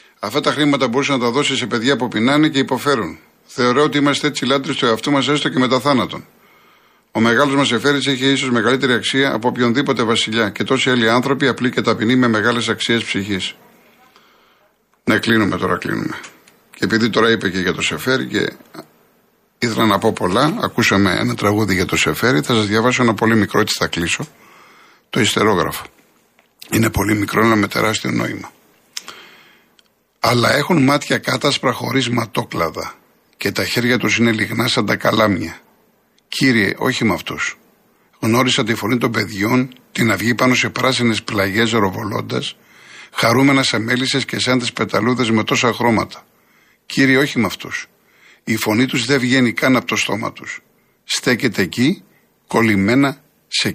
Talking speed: 165 wpm